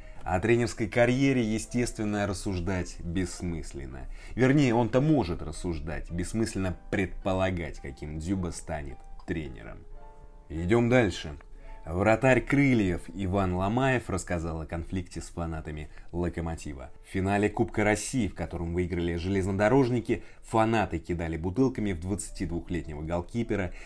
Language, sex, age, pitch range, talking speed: Russian, male, 20-39, 85-115 Hz, 105 wpm